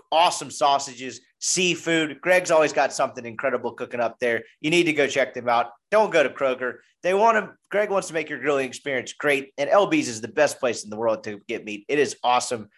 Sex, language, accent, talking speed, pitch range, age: male, English, American, 225 wpm, 130-185 Hz, 30-49